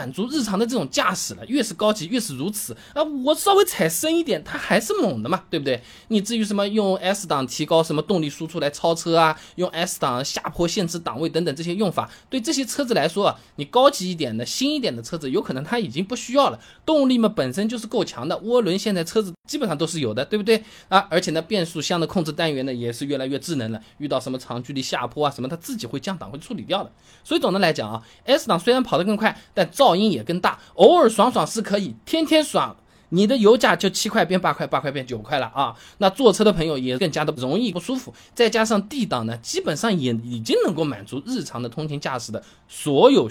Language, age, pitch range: Chinese, 20-39, 135-215 Hz